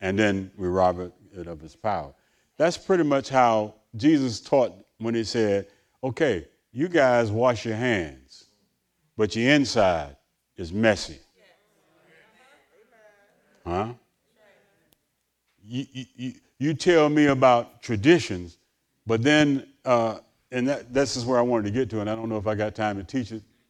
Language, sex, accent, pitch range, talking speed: English, male, American, 110-155 Hz, 155 wpm